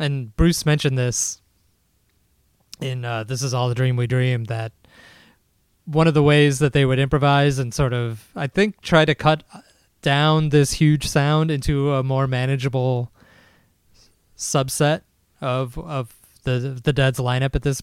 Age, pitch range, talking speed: 20-39, 115-145 Hz, 160 wpm